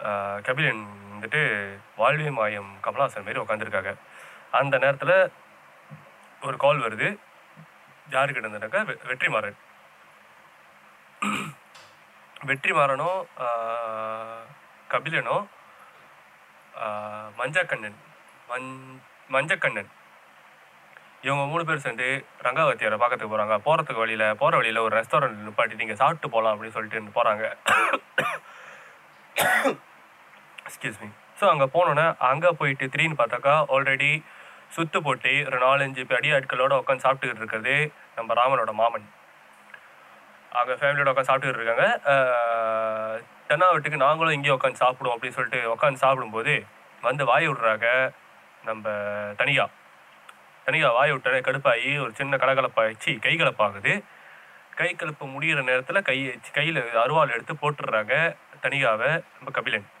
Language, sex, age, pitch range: Tamil, male, 20-39, 110-145 Hz